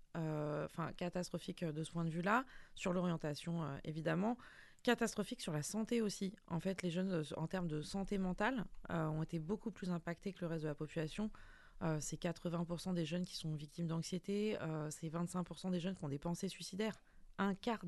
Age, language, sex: 20-39, French, female